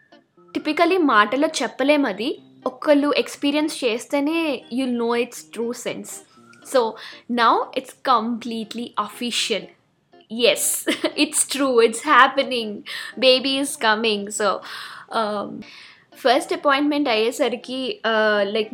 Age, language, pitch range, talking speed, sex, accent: 10-29, Telugu, 225-290 Hz, 95 wpm, female, native